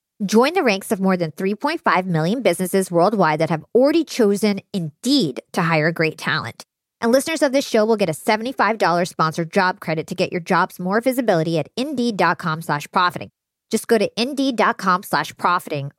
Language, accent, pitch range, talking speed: English, American, 180-235 Hz, 175 wpm